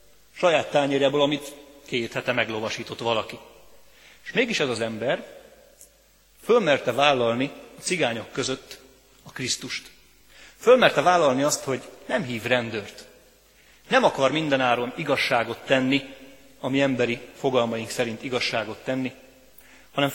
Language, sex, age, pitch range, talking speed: Hungarian, male, 30-49, 120-140 Hz, 115 wpm